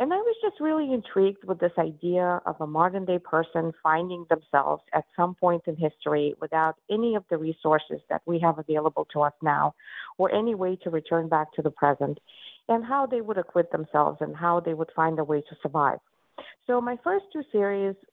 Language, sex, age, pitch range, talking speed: English, female, 50-69, 160-210 Hz, 205 wpm